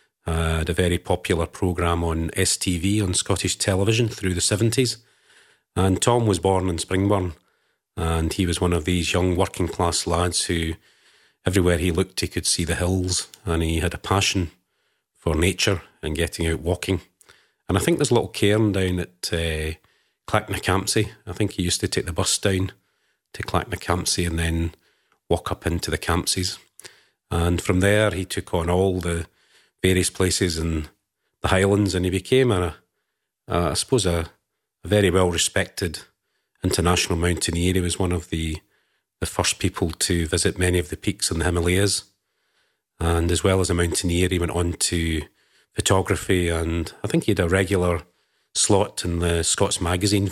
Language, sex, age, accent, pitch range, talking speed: English, male, 40-59, British, 85-95 Hz, 170 wpm